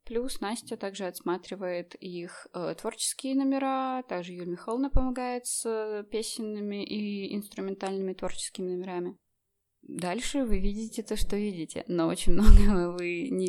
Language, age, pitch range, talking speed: Russian, 20-39, 180-215 Hz, 130 wpm